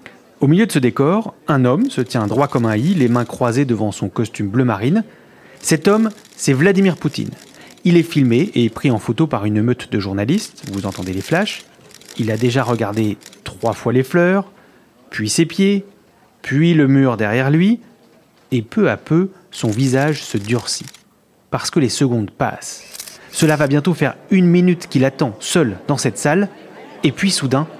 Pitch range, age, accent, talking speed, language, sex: 120-175 Hz, 30-49, French, 185 wpm, French, male